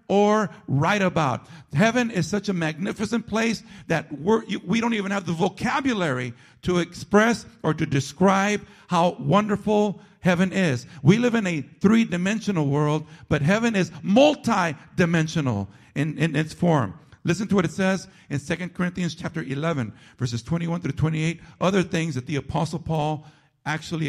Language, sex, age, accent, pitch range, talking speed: English, male, 50-69, American, 145-195 Hz, 165 wpm